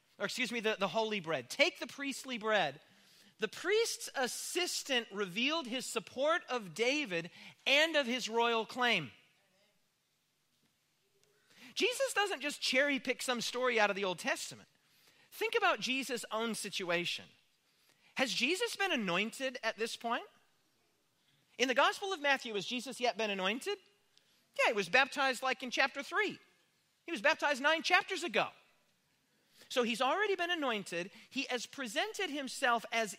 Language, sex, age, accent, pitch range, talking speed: English, male, 40-59, American, 220-305 Hz, 150 wpm